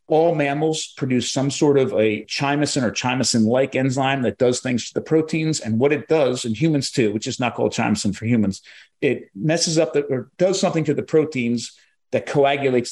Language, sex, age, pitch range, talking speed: English, male, 50-69, 115-145 Hz, 200 wpm